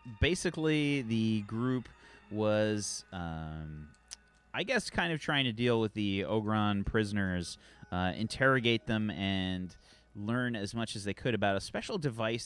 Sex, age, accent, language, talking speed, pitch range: male, 30-49, American, English, 145 wpm, 85-110 Hz